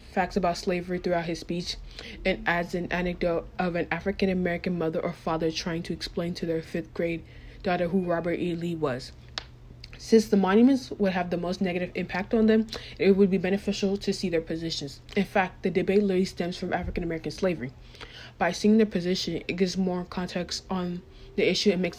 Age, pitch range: 20-39, 170-190 Hz